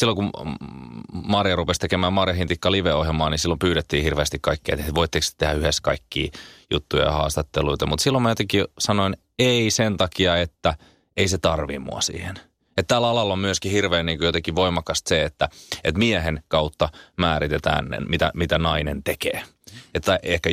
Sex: male